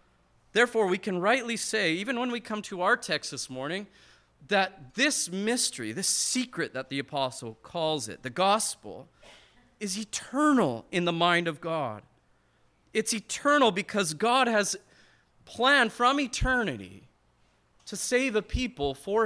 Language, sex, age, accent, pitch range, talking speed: English, male, 30-49, American, 150-225 Hz, 145 wpm